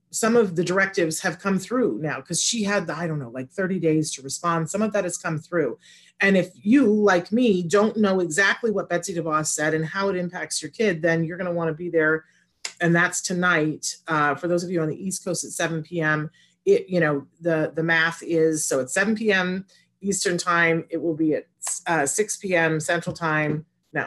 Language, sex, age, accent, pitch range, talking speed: English, female, 40-59, American, 160-200 Hz, 220 wpm